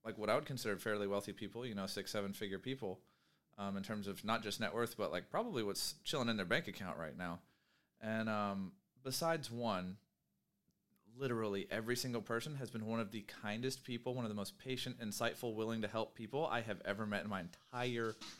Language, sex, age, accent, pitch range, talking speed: English, male, 30-49, American, 100-120 Hz, 210 wpm